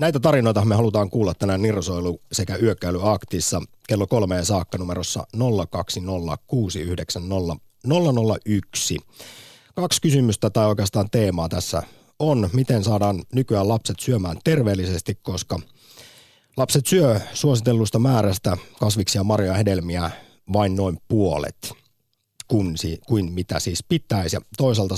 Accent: native